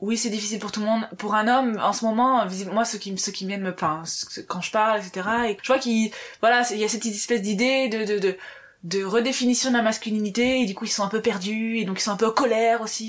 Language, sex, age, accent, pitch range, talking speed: French, female, 20-39, French, 190-235 Hz, 275 wpm